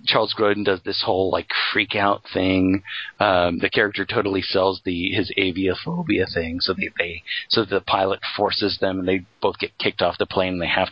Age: 40-59